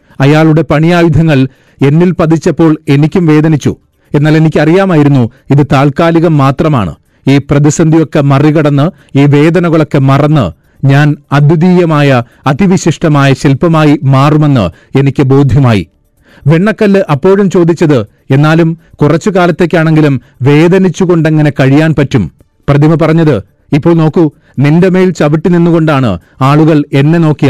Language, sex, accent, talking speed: Malayalam, male, native, 95 wpm